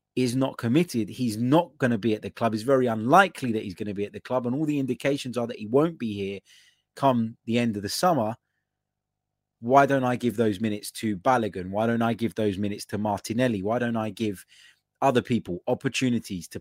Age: 20-39